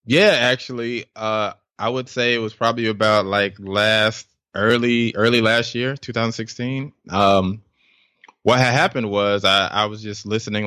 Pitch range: 100-115 Hz